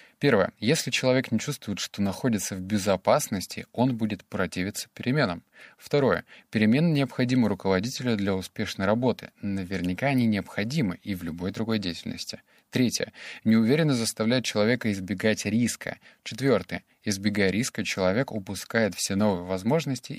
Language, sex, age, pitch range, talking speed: Russian, male, 20-39, 95-125 Hz, 125 wpm